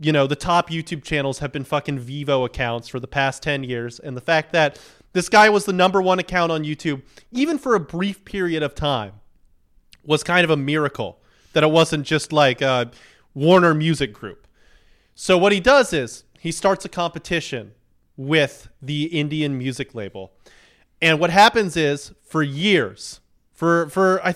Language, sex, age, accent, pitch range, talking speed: English, male, 30-49, American, 135-175 Hz, 175 wpm